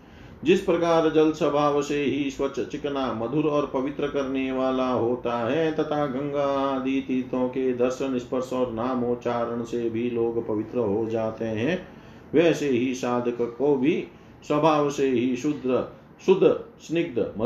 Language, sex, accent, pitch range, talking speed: Hindi, male, native, 120-145 Hz, 145 wpm